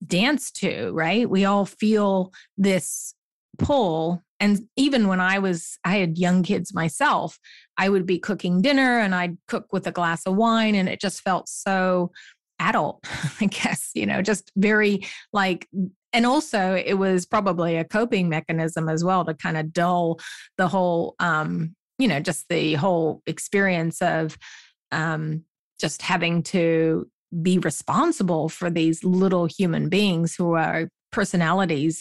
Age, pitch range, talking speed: 30-49, 165-200 Hz, 155 wpm